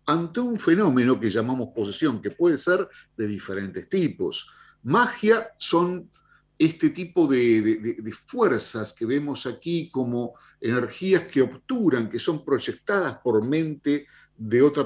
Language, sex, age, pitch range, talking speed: Spanish, male, 50-69, 125-190 Hz, 135 wpm